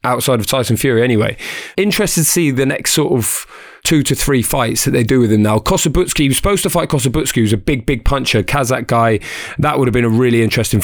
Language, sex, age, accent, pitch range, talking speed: English, male, 20-39, British, 110-130 Hz, 240 wpm